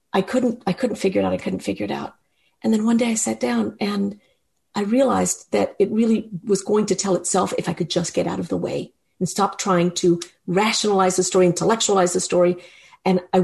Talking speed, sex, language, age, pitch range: 230 wpm, female, English, 50-69, 180-235 Hz